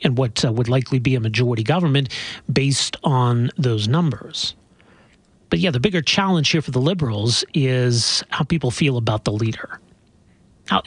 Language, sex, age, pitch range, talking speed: English, male, 40-59, 125-170 Hz, 165 wpm